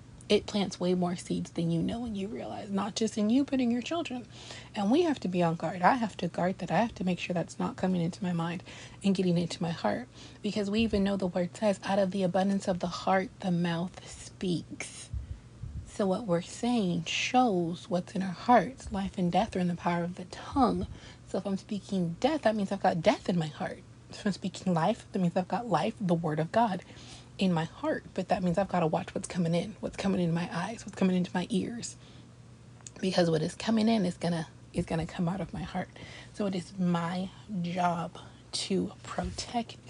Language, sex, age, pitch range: English, female, 30-49, 175-205 Hz